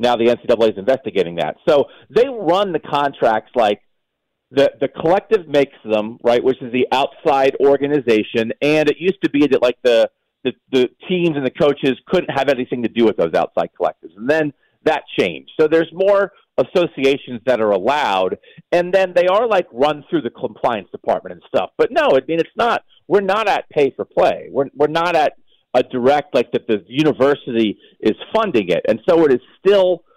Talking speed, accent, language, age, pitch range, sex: 195 wpm, American, English, 40-59, 125-160 Hz, male